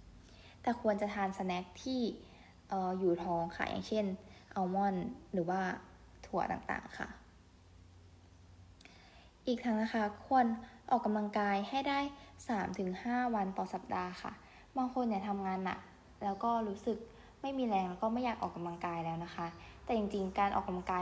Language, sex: Thai, female